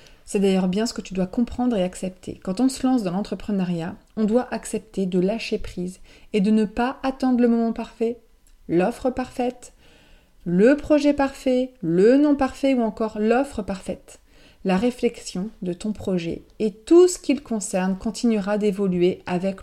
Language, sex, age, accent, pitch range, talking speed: French, female, 30-49, French, 180-225 Hz, 170 wpm